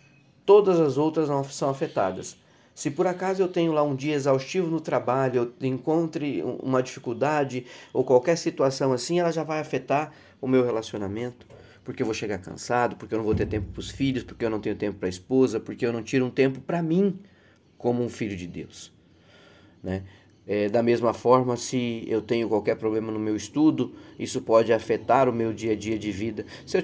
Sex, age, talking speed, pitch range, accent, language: male, 20-39, 200 wpm, 110-145 Hz, Brazilian, Portuguese